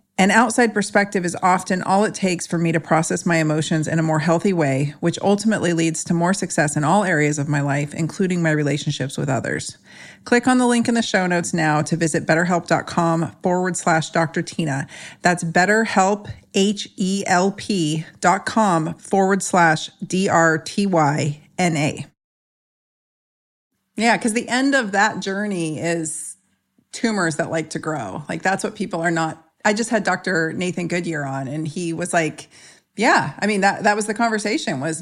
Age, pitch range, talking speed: 40-59, 165-200 Hz, 165 wpm